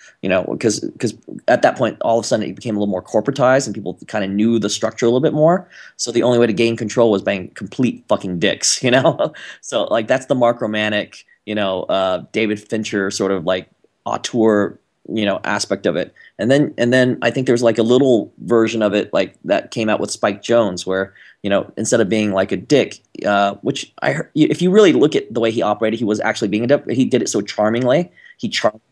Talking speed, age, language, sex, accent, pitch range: 245 wpm, 20-39, English, male, American, 105-125 Hz